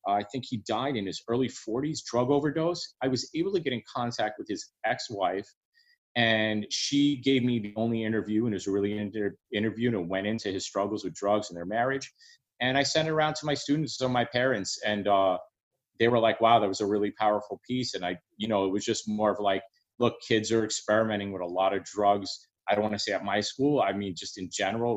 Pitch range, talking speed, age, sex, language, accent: 95-120 Hz, 245 wpm, 30-49, male, English, American